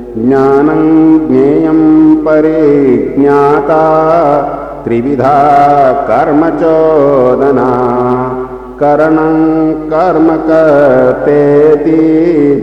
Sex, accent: male, native